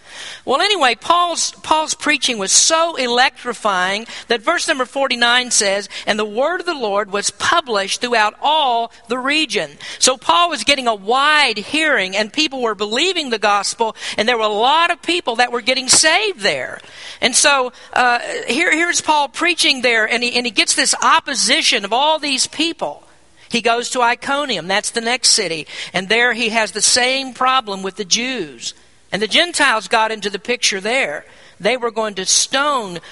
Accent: American